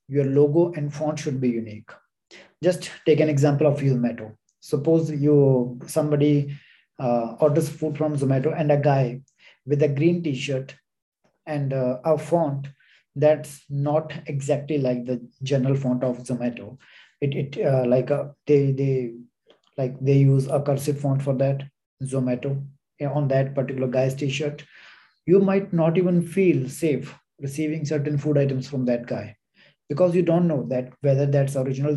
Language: Hindi